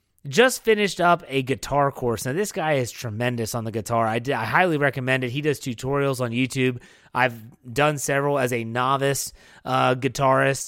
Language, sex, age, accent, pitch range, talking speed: English, male, 30-49, American, 125-165 Hz, 180 wpm